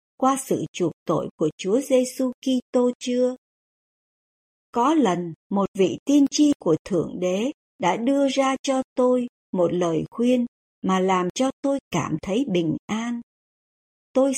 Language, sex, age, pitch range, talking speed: Vietnamese, male, 60-79, 185-265 Hz, 145 wpm